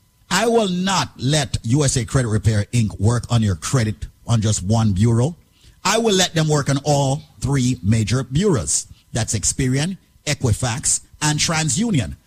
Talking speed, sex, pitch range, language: 150 wpm, male, 115-160 Hz, English